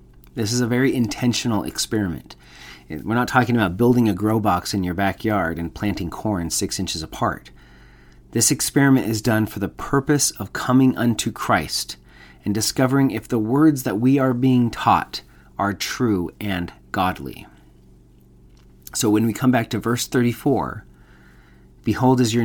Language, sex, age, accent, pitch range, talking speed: English, male, 30-49, American, 85-120 Hz, 160 wpm